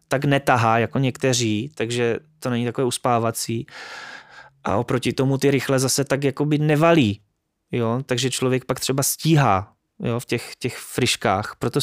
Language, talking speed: Czech, 150 wpm